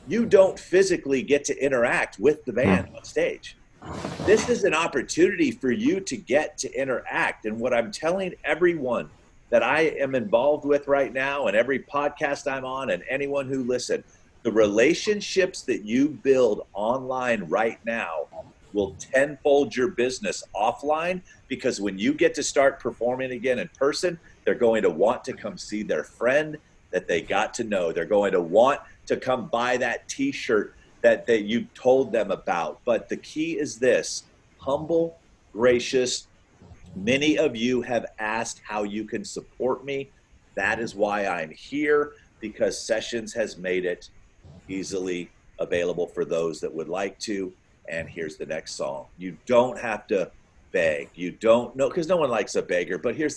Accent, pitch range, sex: American, 115-190 Hz, male